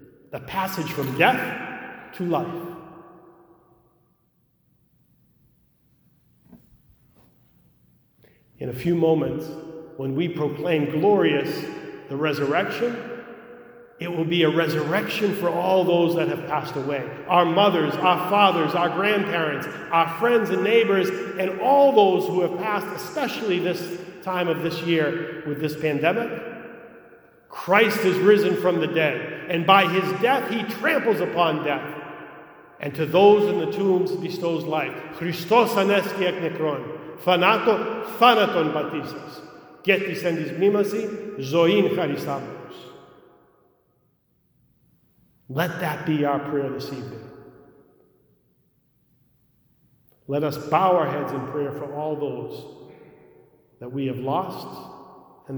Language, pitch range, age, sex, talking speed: English, 150-195 Hz, 40-59, male, 105 wpm